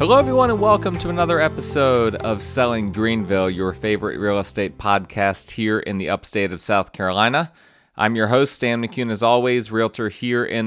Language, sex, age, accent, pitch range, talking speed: English, male, 20-39, American, 100-120 Hz, 180 wpm